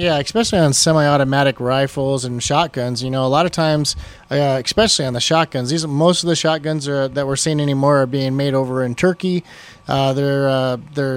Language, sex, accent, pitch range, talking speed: English, male, American, 135-155 Hz, 205 wpm